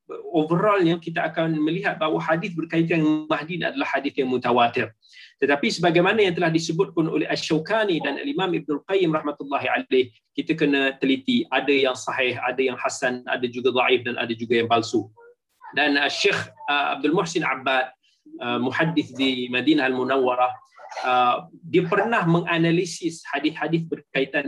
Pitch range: 130-175 Hz